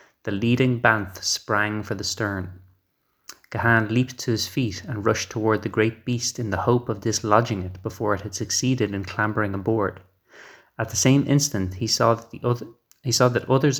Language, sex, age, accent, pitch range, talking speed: English, male, 30-49, Irish, 100-125 Hz, 190 wpm